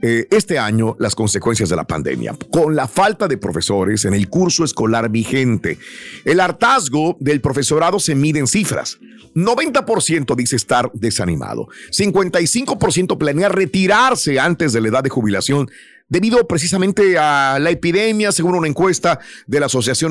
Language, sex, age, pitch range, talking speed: Spanish, male, 50-69, 120-180 Hz, 145 wpm